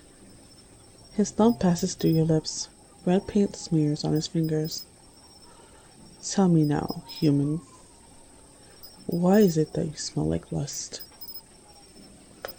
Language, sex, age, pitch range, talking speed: English, female, 20-39, 150-185 Hz, 115 wpm